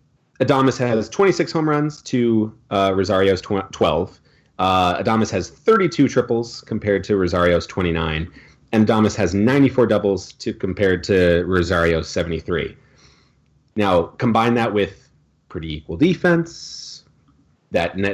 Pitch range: 95-130 Hz